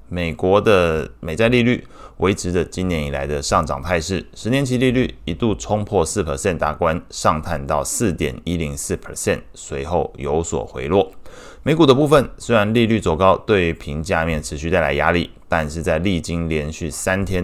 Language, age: Chinese, 20-39